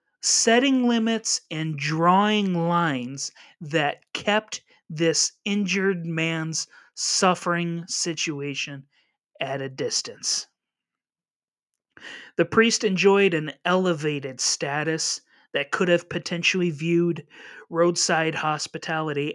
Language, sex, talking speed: English, male, 85 wpm